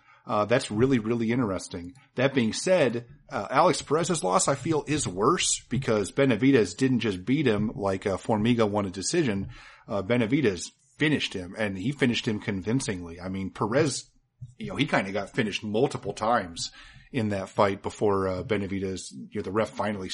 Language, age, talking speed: English, 40-59, 180 wpm